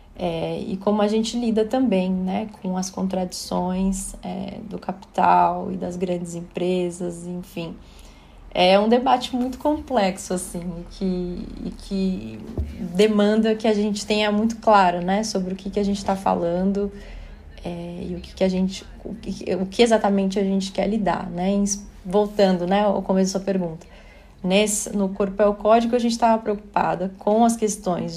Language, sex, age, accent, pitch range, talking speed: Portuguese, female, 20-39, Brazilian, 185-210 Hz, 175 wpm